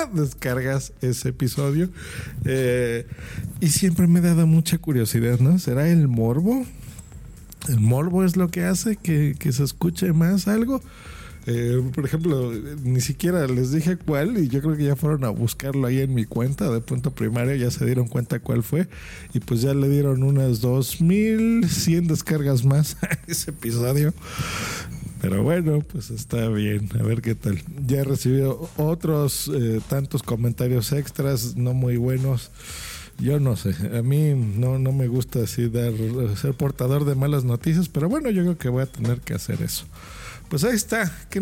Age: 50-69